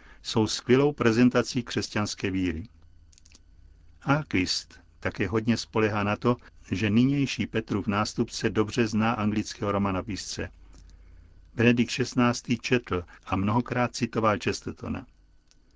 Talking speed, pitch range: 105 wpm, 95-120 Hz